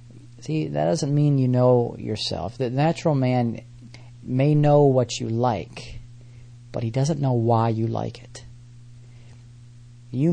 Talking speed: 140 wpm